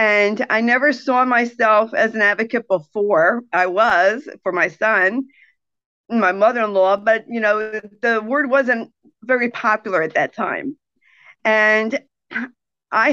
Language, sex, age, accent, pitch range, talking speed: English, female, 50-69, American, 205-255 Hz, 135 wpm